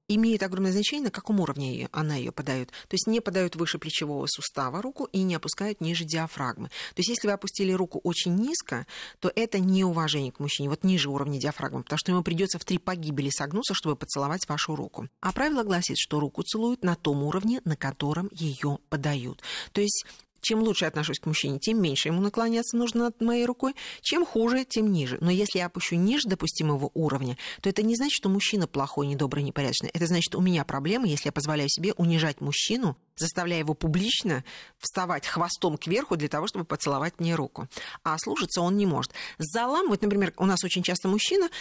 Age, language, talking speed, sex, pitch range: 40-59, Russian, 200 wpm, female, 155-210 Hz